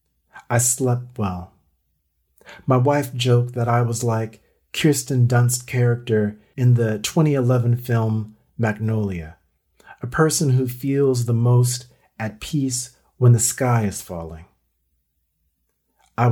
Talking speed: 120 wpm